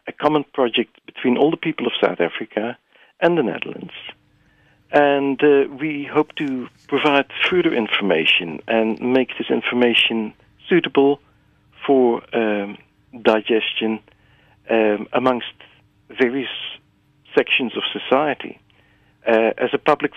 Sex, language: male, English